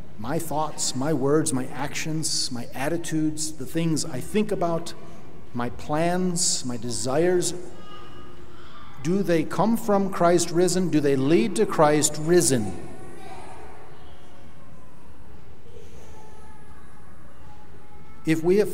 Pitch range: 135-160 Hz